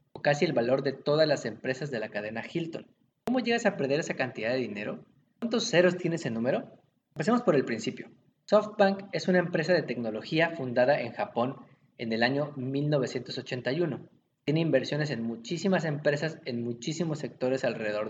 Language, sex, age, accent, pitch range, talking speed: Spanish, male, 20-39, Mexican, 125-160 Hz, 170 wpm